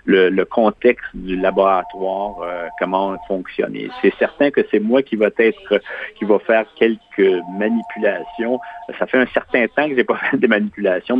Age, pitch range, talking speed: 50-69, 95-120 Hz, 175 wpm